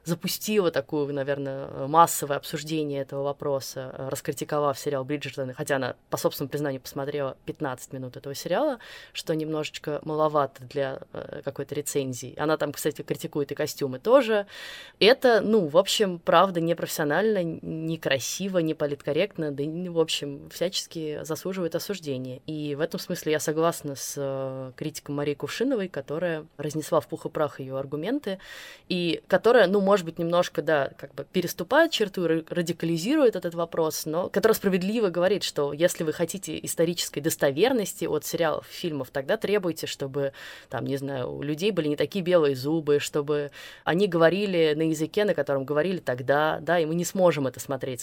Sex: female